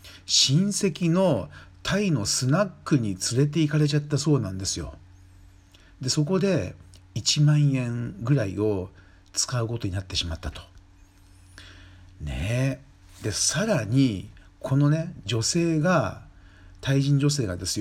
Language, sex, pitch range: Japanese, male, 95-145 Hz